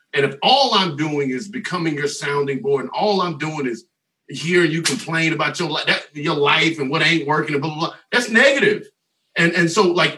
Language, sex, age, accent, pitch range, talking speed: English, male, 40-59, American, 145-190 Hz, 205 wpm